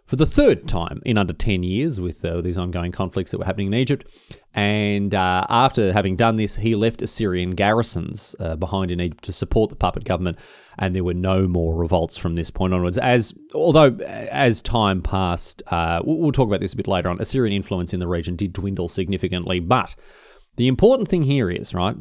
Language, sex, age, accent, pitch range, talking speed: English, male, 30-49, Australian, 90-125 Hz, 205 wpm